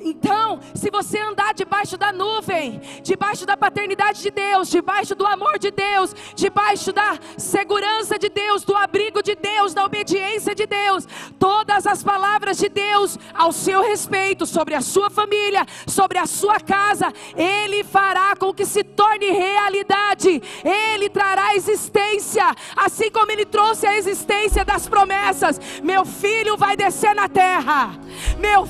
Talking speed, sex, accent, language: 150 wpm, female, Brazilian, Portuguese